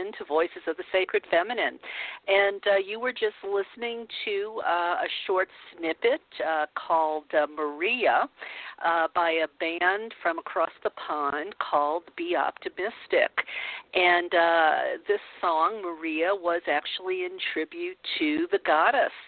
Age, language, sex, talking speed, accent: 50-69, English, female, 135 wpm, American